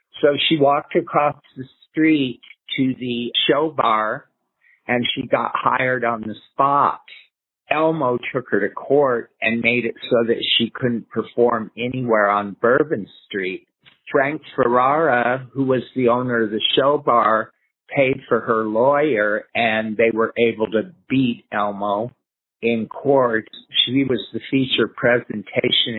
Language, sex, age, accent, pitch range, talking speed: English, male, 50-69, American, 110-130 Hz, 145 wpm